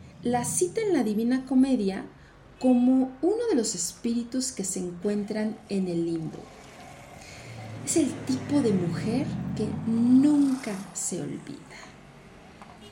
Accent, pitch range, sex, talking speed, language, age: Mexican, 185-260 Hz, female, 120 wpm, Spanish, 40-59